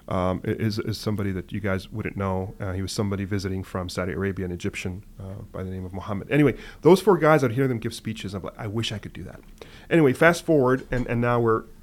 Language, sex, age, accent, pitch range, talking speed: English, male, 30-49, American, 100-120 Hz, 255 wpm